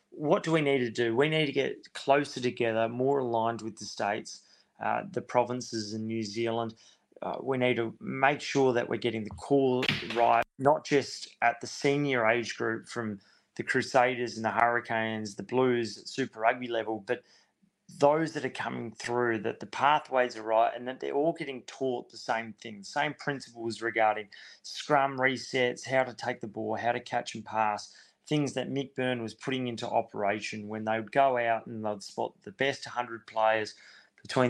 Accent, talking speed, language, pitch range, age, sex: Australian, 190 wpm, English, 110-130 Hz, 30-49, male